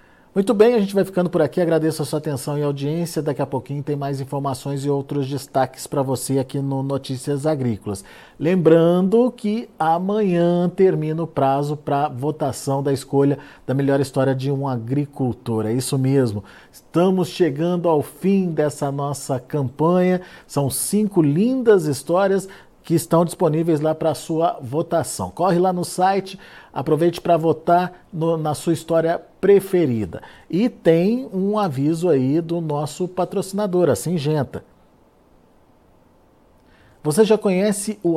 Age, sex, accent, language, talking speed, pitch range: 50-69, male, Brazilian, Portuguese, 145 wpm, 140-185 Hz